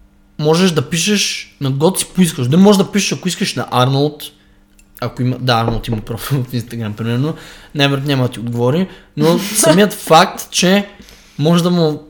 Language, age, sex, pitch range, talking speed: Bulgarian, 20-39, male, 125-170 Hz, 175 wpm